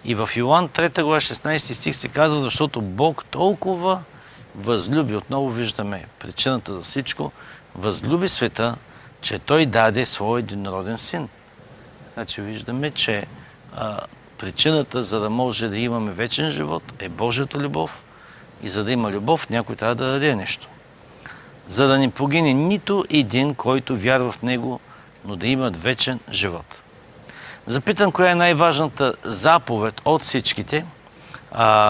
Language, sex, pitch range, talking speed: Bulgarian, male, 115-155 Hz, 140 wpm